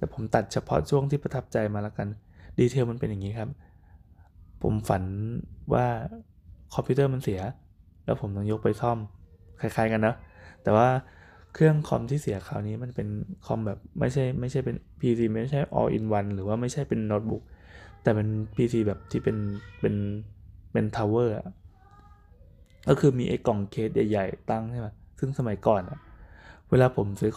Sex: male